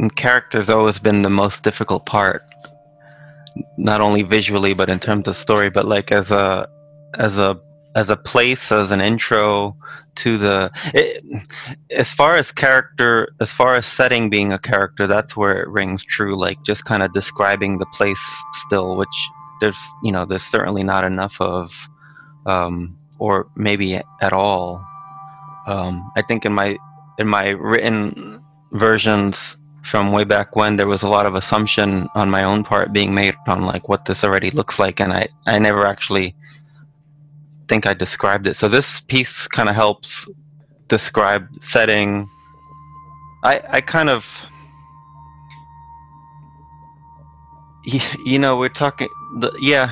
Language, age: English, 20-39